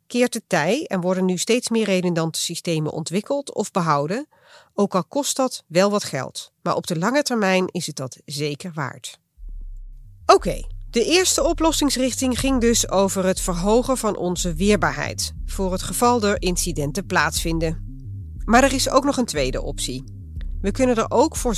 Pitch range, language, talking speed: 150-220 Hz, Dutch, 170 wpm